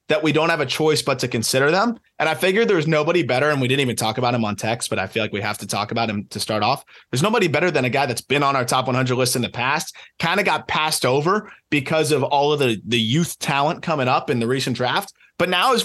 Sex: male